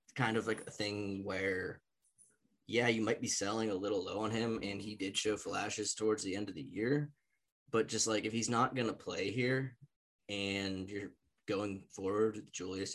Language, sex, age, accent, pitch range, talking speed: English, male, 10-29, American, 95-115 Hz, 195 wpm